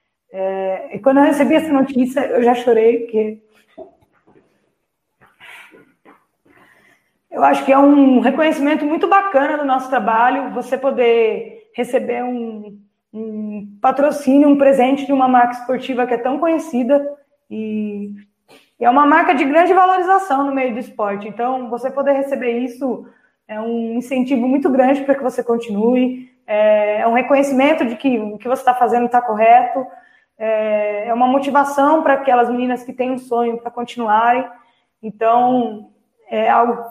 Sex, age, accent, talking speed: female, 20-39, Brazilian, 155 wpm